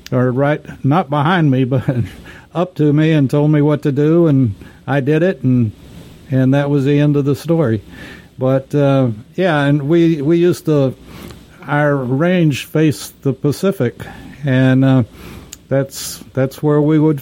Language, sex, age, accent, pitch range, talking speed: English, male, 60-79, American, 125-150 Hz, 165 wpm